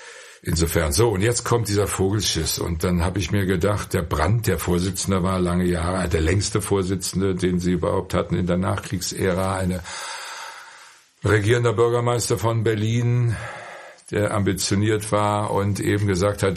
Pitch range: 85-105 Hz